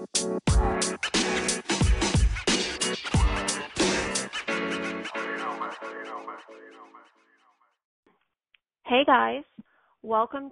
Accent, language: American, English